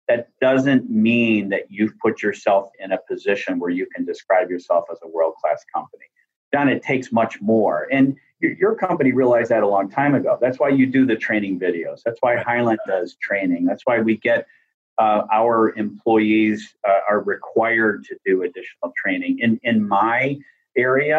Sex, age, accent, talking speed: male, 40-59, American, 180 wpm